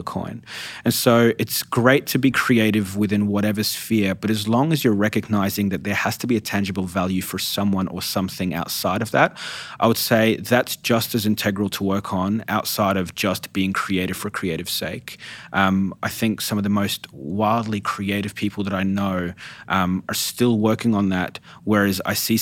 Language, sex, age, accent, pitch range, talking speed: English, male, 30-49, Australian, 95-115 Hz, 195 wpm